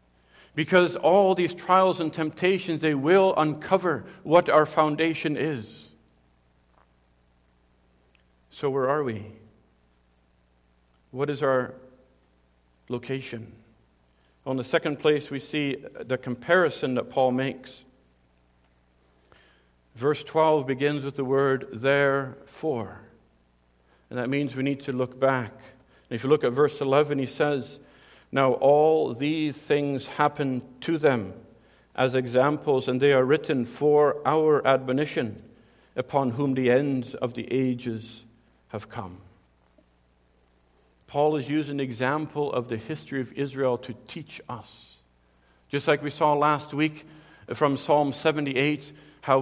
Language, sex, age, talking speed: English, male, 50-69, 125 wpm